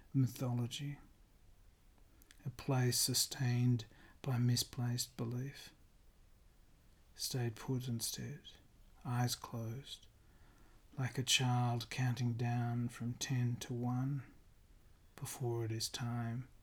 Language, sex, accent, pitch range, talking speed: English, male, Australian, 110-125 Hz, 90 wpm